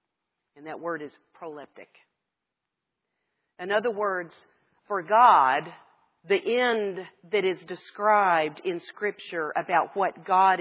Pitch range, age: 170-210 Hz, 40-59